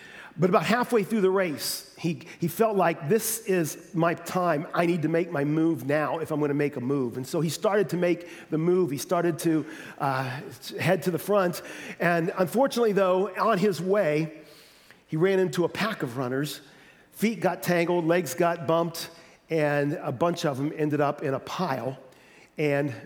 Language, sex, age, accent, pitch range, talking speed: English, male, 40-59, American, 140-175 Hz, 195 wpm